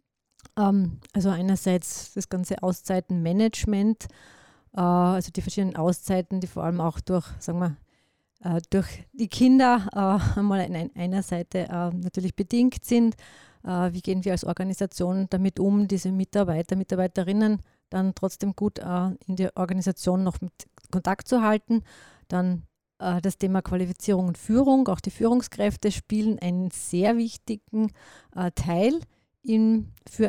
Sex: female